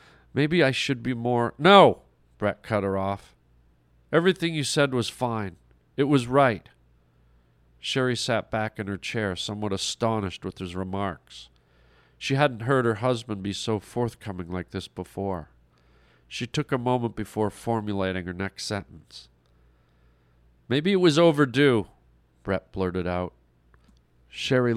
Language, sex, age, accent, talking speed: English, male, 40-59, American, 140 wpm